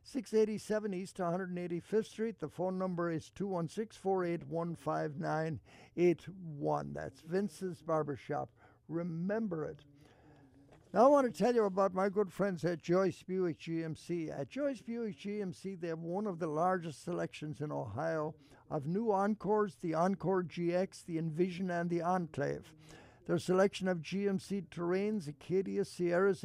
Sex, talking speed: male, 135 wpm